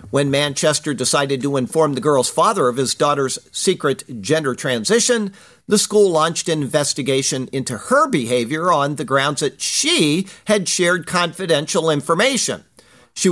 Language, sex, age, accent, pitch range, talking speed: English, male, 50-69, American, 140-185 Hz, 145 wpm